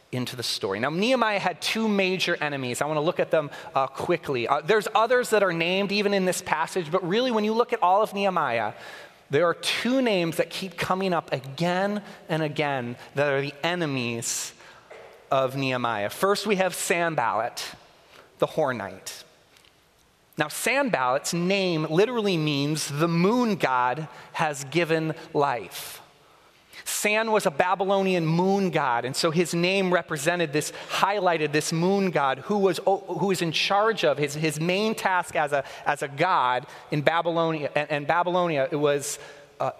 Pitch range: 155-195 Hz